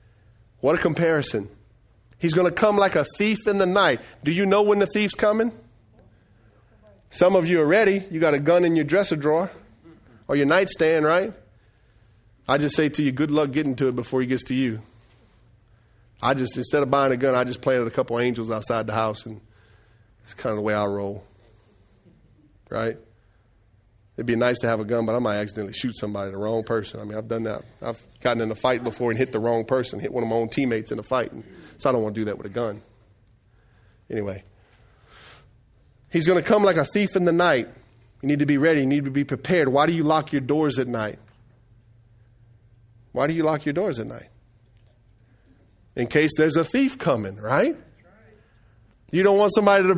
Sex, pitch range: male, 110-155 Hz